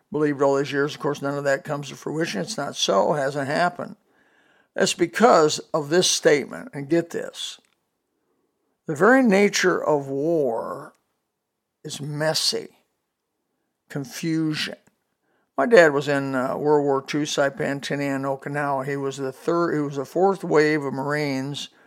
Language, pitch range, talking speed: English, 140-155 Hz, 155 wpm